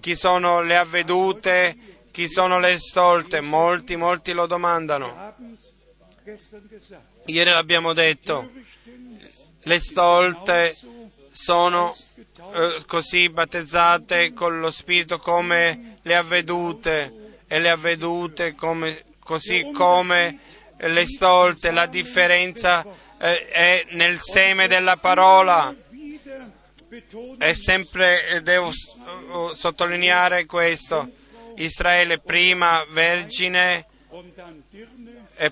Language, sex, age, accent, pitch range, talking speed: Italian, male, 30-49, native, 170-180 Hz, 85 wpm